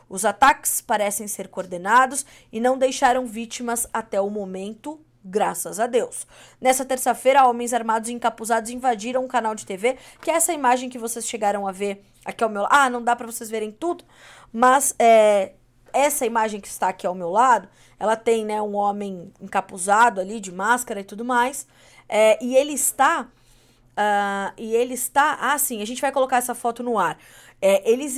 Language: Portuguese